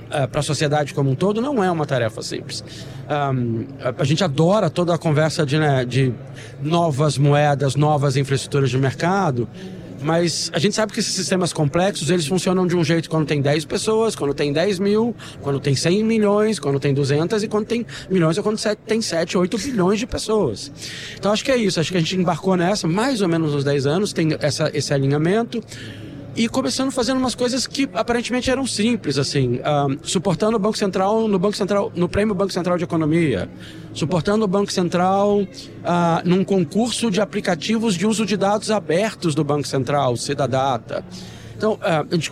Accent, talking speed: Brazilian, 190 wpm